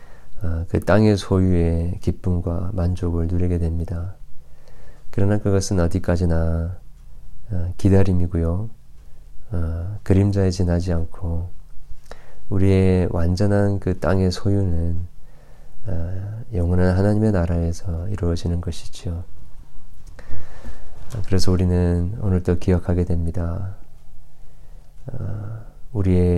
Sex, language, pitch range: male, Korean, 85-95 Hz